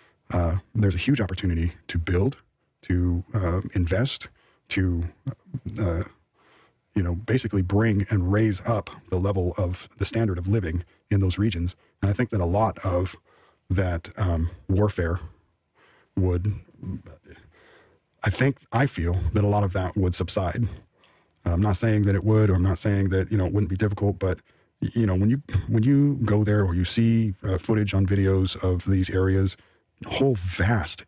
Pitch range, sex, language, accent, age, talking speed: 90-105 Hz, male, English, American, 40-59, 170 wpm